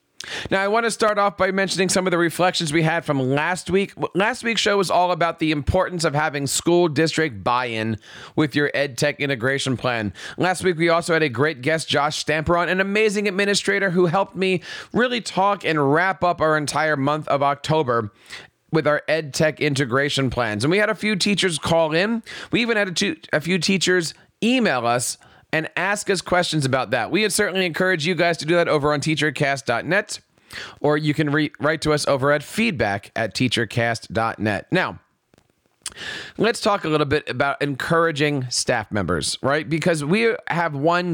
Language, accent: English, American